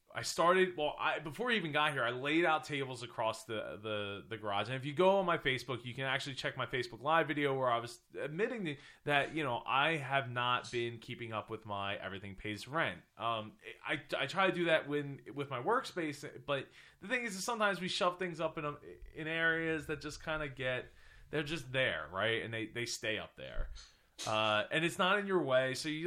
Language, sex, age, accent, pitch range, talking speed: English, male, 20-39, American, 120-155 Hz, 230 wpm